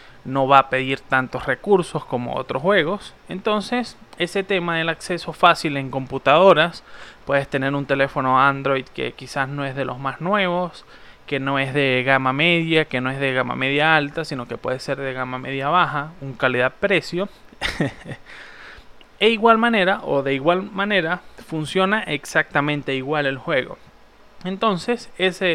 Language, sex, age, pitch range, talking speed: Spanish, male, 20-39, 140-185 Hz, 160 wpm